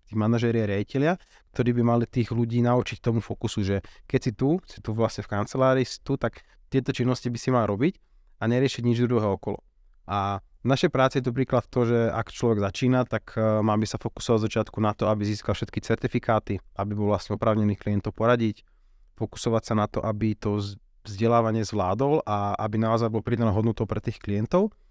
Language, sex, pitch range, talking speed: Slovak, male, 105-120 Hz, 200 wpm